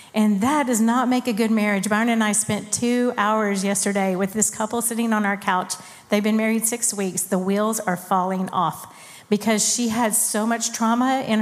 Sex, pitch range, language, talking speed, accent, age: female, 200-235 Hz, English, 205 wpm, American, 40-59